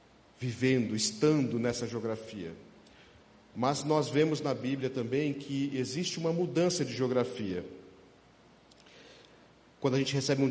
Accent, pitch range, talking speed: Brazilian, 115-140 Hz, 120 wpm